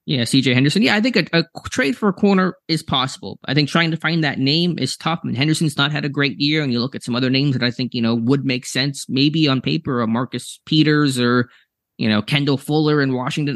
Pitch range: 110-140 Hz